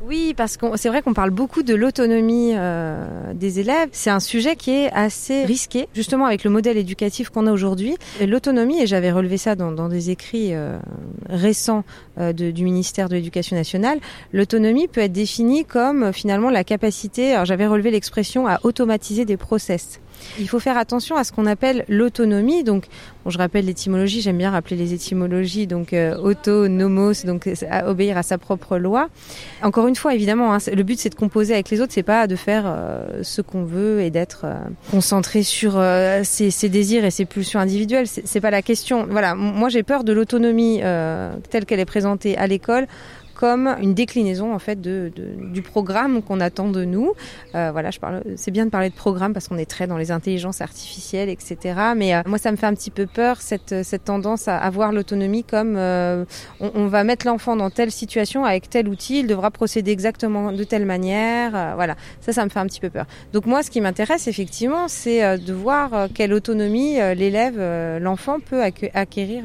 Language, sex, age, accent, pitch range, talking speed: French, female, 30-49, French, 190-230 Hz, 210 wpm